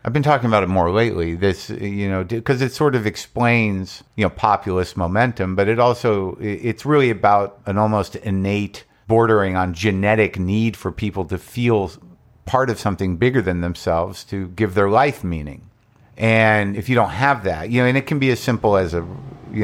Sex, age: male, 50-69